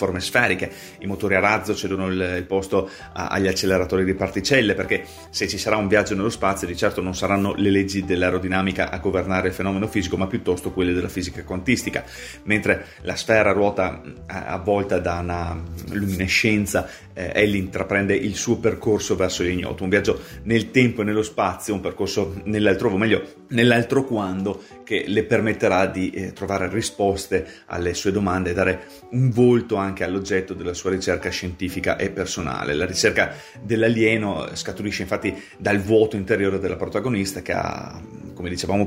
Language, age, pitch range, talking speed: Italian, 30-49, 95-105 Hz, 160 wpm